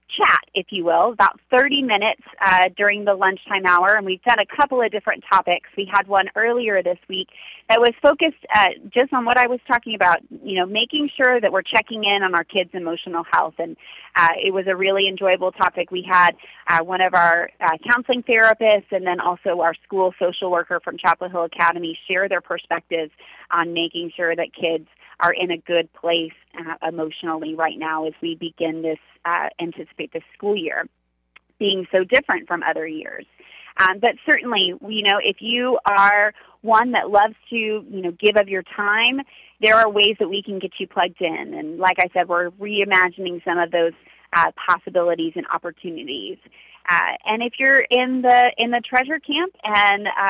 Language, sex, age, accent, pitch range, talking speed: English, female, 30-49, American, 175-225 Hz, 195 wpm